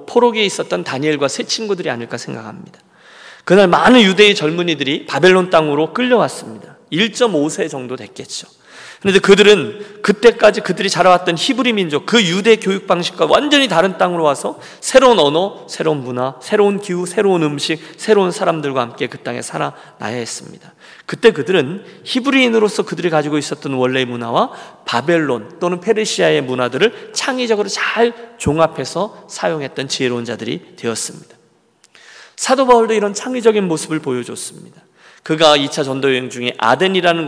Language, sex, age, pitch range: Korean, male, 40-59, 140-210 Hz